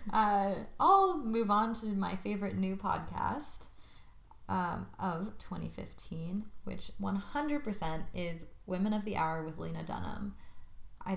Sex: female